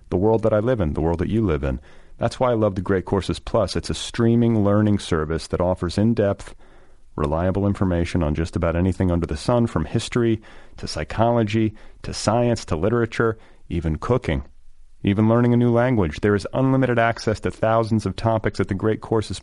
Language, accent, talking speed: English, American, 200 wpm